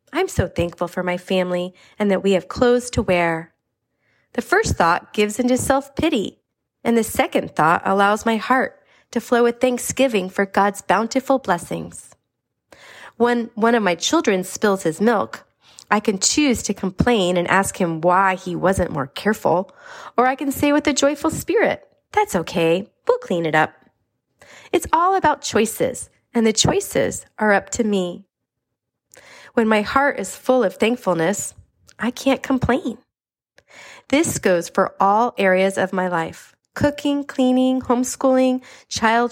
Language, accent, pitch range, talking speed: English, American, 185-255 Hz, 155 wpm